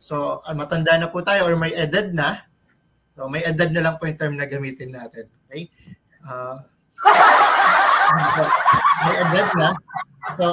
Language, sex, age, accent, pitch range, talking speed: Filipino, male, 20-39, native, 150-180 Hz, 155 wpm